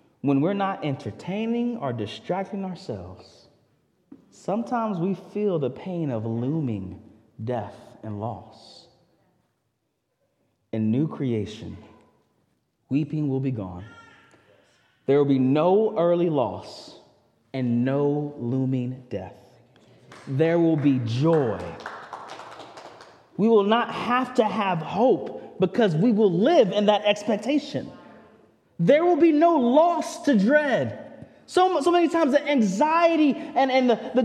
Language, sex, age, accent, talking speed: English, male, 30-49, American, 120 wpm